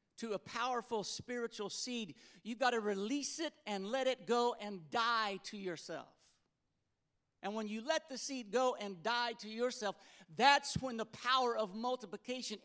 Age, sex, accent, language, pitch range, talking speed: 50-69, male, American, English, 190-240 Hz, 165 wpm